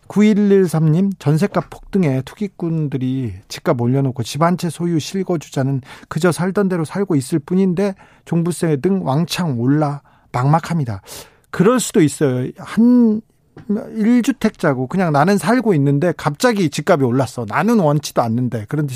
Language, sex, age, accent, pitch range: Korean, male, 40-59, native, 135-180 Hz